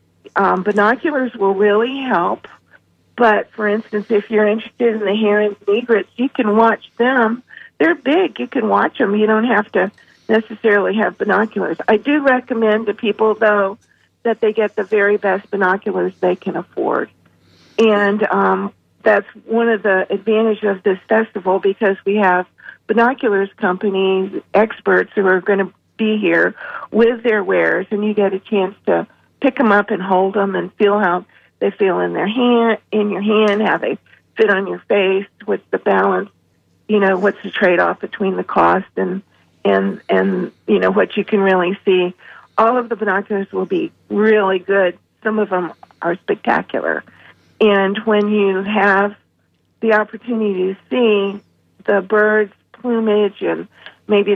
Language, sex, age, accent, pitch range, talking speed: English, female, 50-69, American, 195-220 Hz, 165 wpm